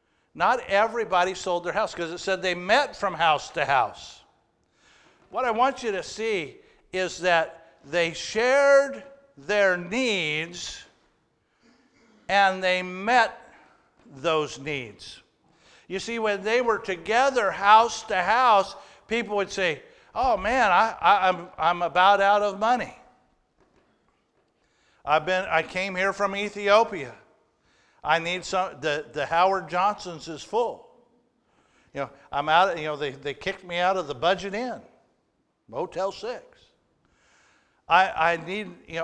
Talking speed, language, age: 140 wpm, English, 50-69